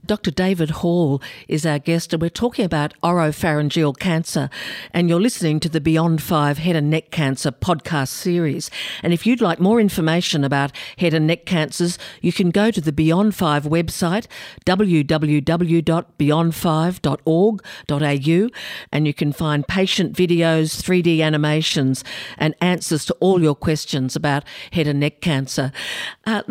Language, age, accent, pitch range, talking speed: English, 50-69, Australian, 150-180 Hz, 145 wpm